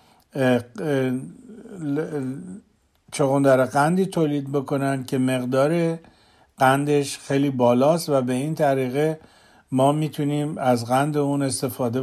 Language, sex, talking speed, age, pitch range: Persian, male, 100 wpm, 60-79, 125-145 Hz